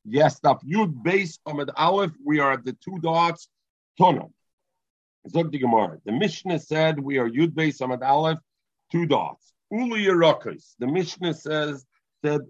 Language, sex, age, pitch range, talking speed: English, male, 50-69, 130-170 Hz, 140 wpm